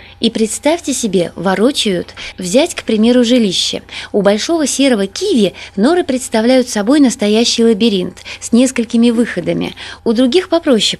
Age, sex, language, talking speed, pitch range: 20-39, female, Russian, 125 wpm, 195-260 Hz